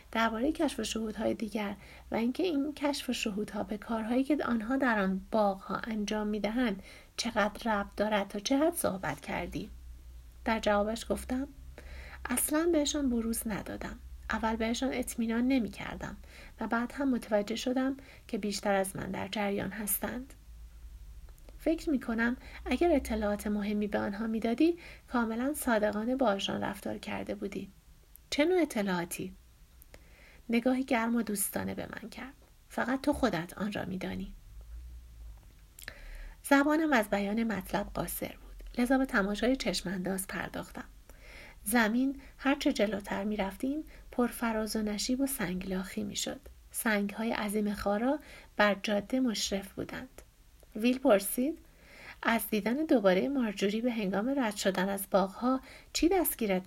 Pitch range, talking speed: 200-255 Hz, 135 wpm